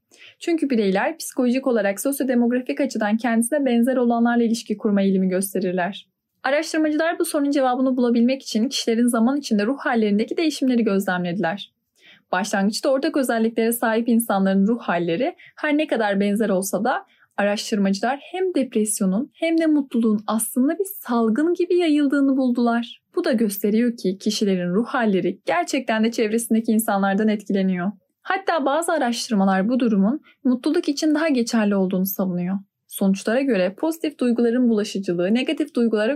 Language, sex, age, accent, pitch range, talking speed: Turkish, female, 10-29, native, 200-280 Hz, 135 wpm